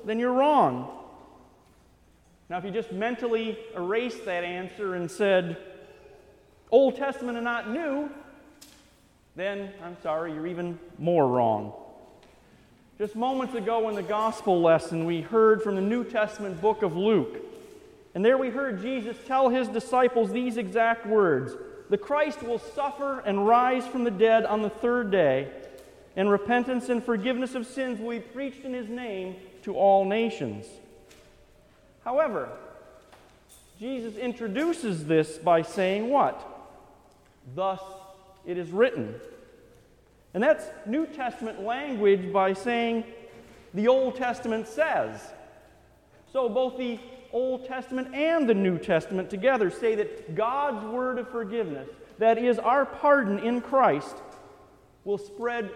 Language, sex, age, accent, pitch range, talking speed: English, male, 40-59, American, 195-255 Hz, 135 wpm